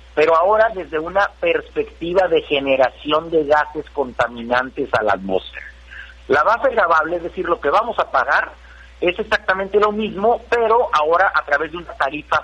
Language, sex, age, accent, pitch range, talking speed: Spanish, male, 50-69, Mexican, 150-220 Hz, 165 wpm